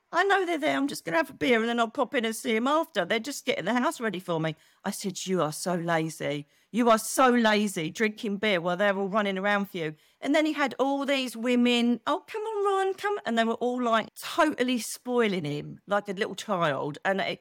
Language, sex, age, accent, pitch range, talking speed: English, female, 40-59, British, 195-250 Hz, 250 wpm